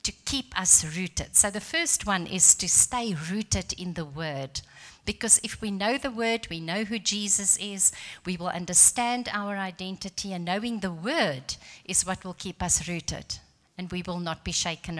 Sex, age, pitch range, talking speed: female, 50-69, 170-220 Hz, 190 wpm